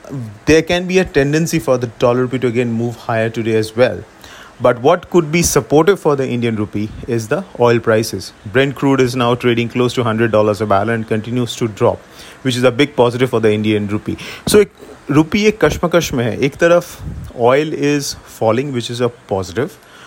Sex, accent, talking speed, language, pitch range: male, Indian, 195 wpm, English, 110-140 Hz